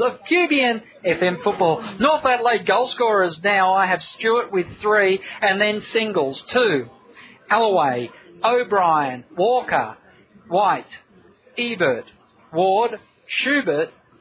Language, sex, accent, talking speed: English, male, Australian, 105 wpm